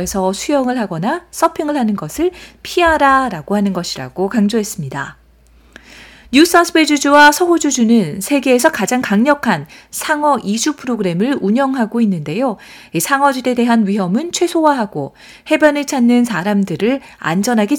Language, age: Korean, 40-59